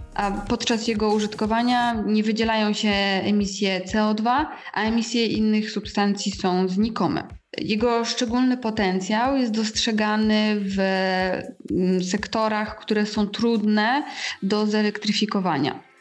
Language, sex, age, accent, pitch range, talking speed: Polish, female, 20-39, native, 195-225 Hz, 95 wpm